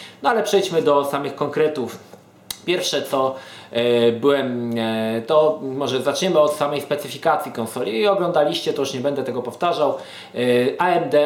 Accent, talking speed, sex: native, 135 wpm, male